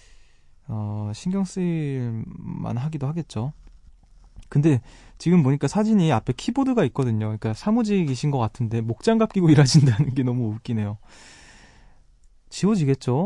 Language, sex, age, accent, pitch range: Korean, male, 20-39, native, 115-165 Hz